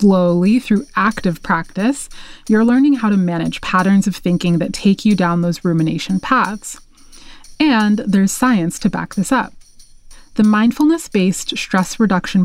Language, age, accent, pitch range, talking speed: English, 20-39, American, 180-225 Hz, 145 wpm